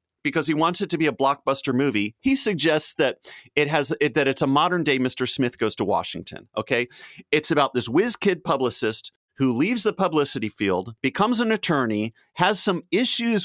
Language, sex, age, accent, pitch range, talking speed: English, male, 30-49, American, 125-185 Hz, 190 wpm